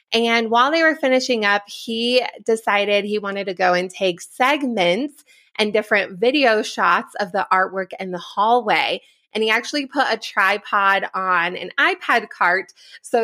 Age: 20-39